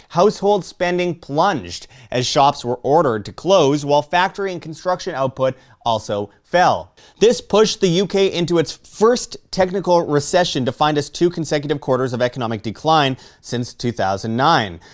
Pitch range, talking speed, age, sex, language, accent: 140-185 Hz, 145 wpm, 30-49, male, English, American